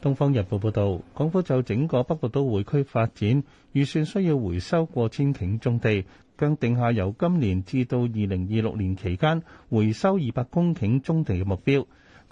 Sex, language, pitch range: male, Chinese, 105-150 Hz